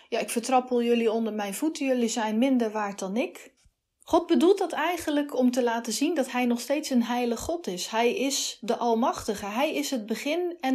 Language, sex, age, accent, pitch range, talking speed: Dutch, female, 30-49, Dutch, 225-290 Hz, 210 wpm